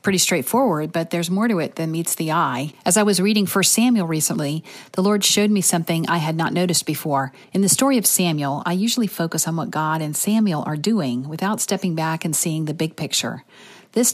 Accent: American